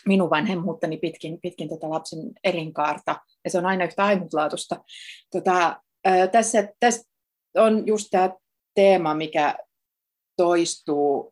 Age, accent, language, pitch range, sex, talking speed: 30-49, native, Finnish, 170-210 Hz, female, 115 wpm